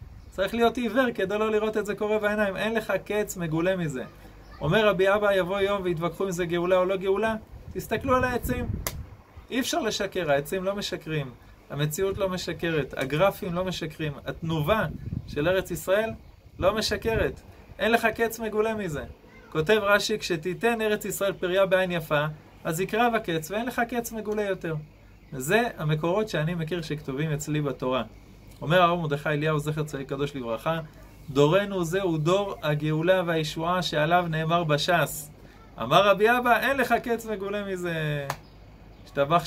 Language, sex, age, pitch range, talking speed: Hebrew, male, 30-49, 145-200 Hz, 155 wpm